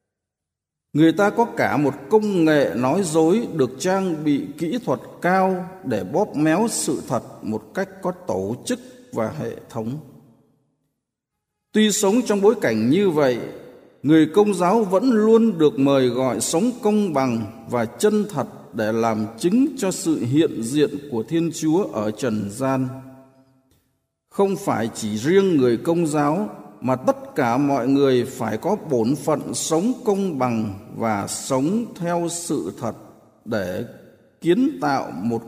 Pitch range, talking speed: 125-185 Hz, 150 wpm